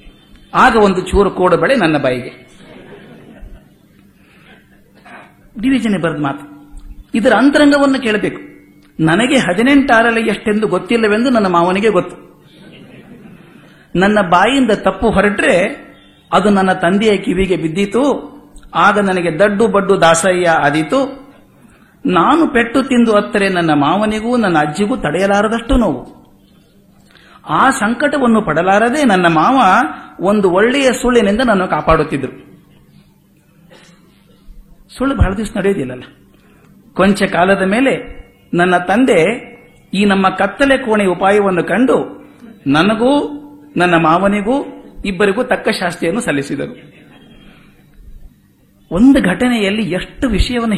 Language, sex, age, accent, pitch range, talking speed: Kannada, male, 50-69, native, 175-235 Hz, 90 wpm